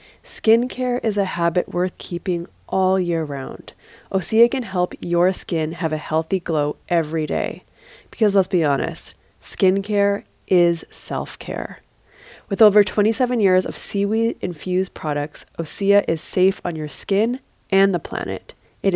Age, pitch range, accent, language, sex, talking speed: 20-39, 165-205 Hz, American, English, female, 140 wpm